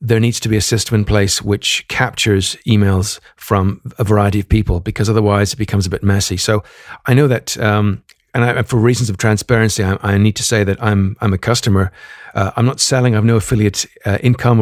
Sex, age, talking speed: male, 50-69, 220 wpm